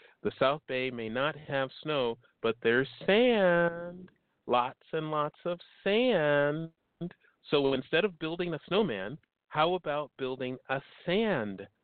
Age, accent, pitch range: 40-59, American, 120-155 Hz